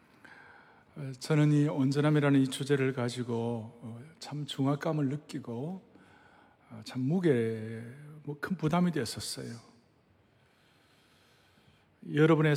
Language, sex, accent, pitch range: Korean, male, native, 120-145 Hz